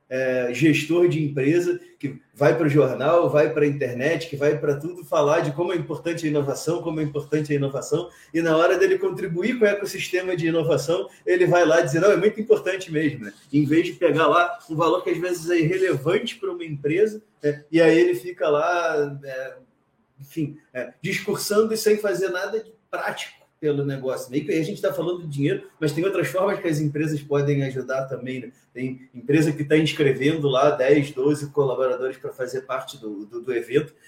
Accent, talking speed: Brazilian, 195 wpm